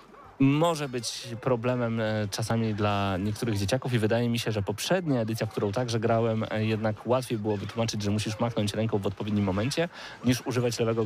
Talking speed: 170 wpm